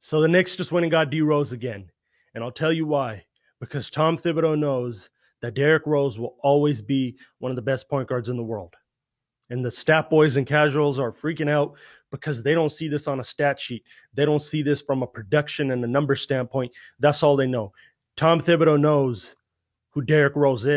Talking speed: 210 wpm